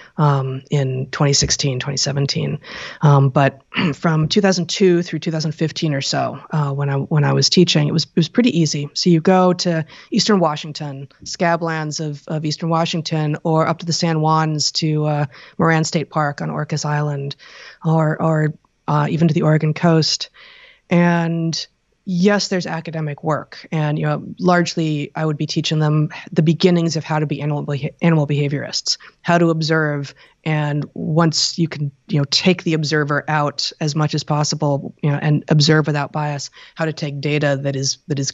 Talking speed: 175 wpm